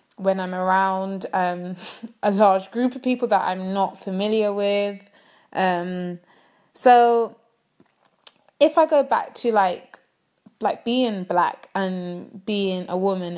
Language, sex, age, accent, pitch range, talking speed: English, female, 20-39, British, 185-225 Hz, 130 wpm